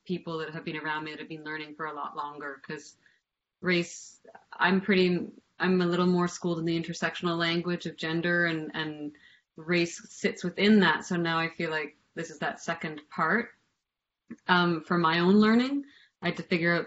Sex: female